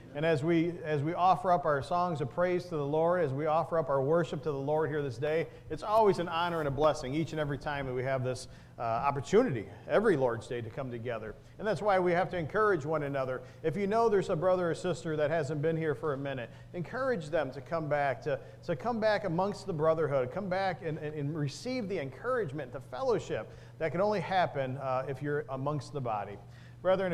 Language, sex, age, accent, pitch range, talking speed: English, male, 40-59, American, 135-180 Hz, 235 wpm